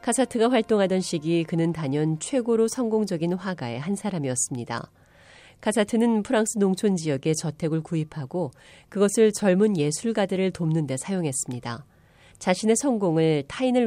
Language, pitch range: Korean, 145-200 Hz